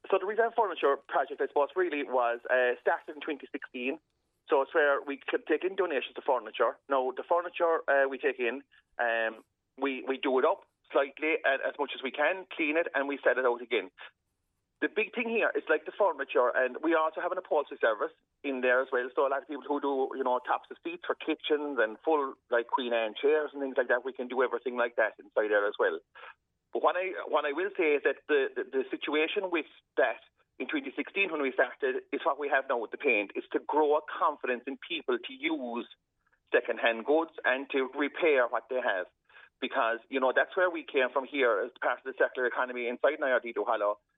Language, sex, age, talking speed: English, male, 40-59, 225 wpm